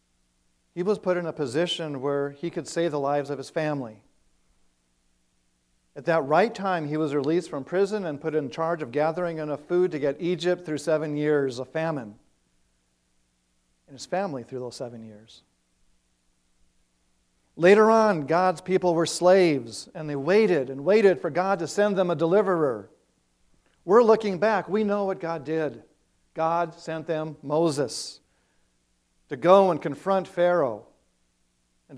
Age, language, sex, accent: 50-69, English, male, American